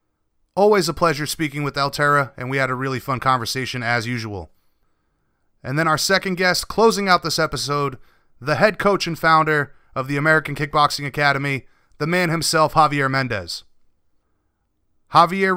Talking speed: 155 wpm